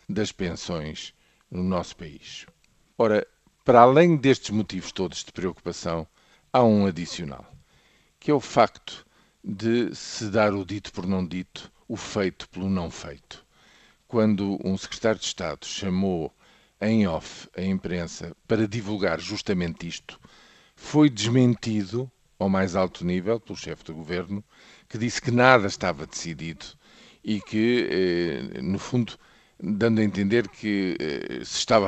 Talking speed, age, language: 135 wpm, 50-69, Portuguese